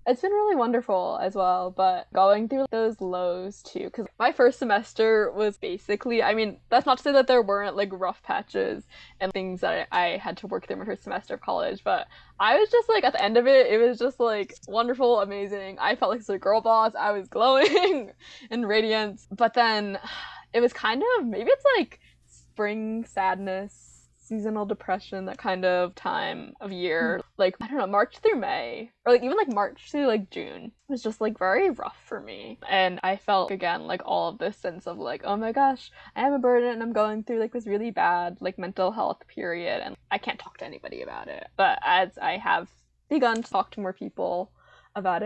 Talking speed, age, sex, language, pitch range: 215 wpm, 10-29, female, English, 195-245 Hz